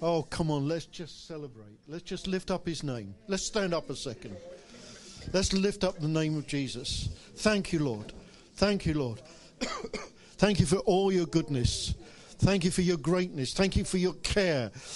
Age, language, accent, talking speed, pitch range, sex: 50-69, English, British, 185 wpm, 160-220 Hz, male